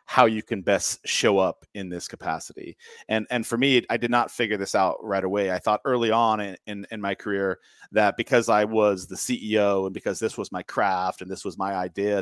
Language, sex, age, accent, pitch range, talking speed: English, male, 40-59, American, 100-130 Hz, 230 wpm